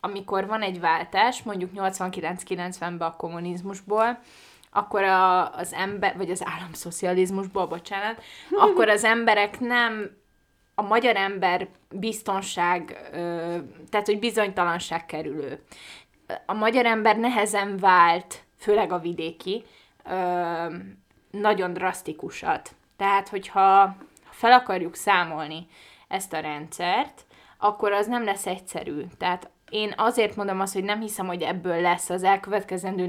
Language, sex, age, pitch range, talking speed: Hungarian, female, 20-39, 175-210 Hz, 115 wpm